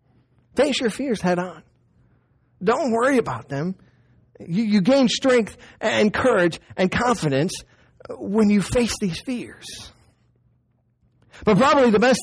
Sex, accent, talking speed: male, American, 130 wpm